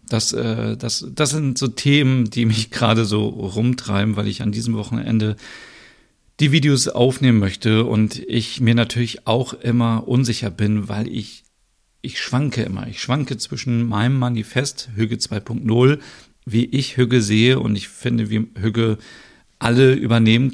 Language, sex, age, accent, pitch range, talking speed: German, male, 40-59, German, 105-125 Hz, 150 wpm